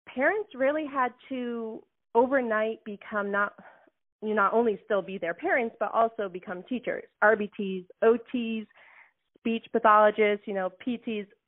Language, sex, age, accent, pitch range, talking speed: English, female, 30-49, American, 195-230 Hz, 130 wpm